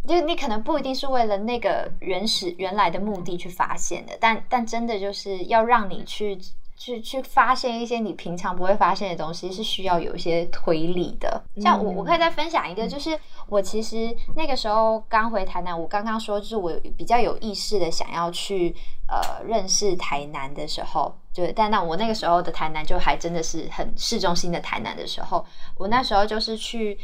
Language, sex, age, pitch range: Chinese, female, 20-39, 175-225 Hz